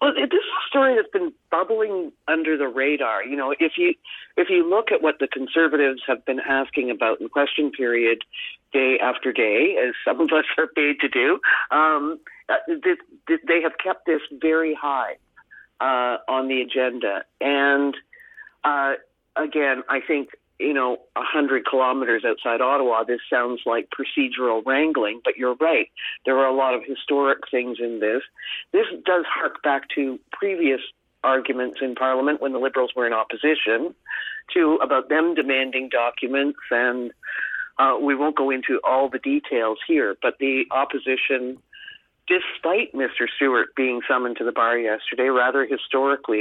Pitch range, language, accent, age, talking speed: 130-170 Hz, English, American, 50-69, 160 wpm